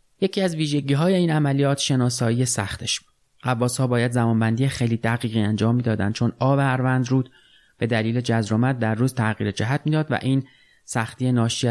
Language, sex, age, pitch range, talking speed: Persian, male, 30-49, 110-130 Hz, 160 wpm